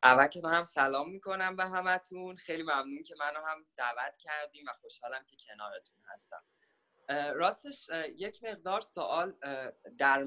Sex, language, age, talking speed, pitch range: male, English, 20-39, 145 wpm, 115-165 Hz